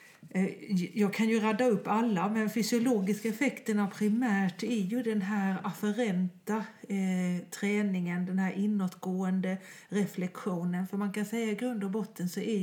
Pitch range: 180-215 Hz